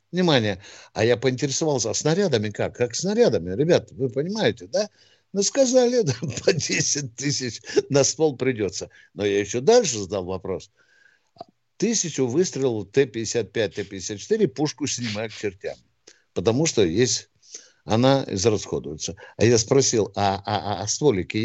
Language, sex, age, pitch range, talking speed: Russian, male, 60-79, 105-155 Hz, 135 wpm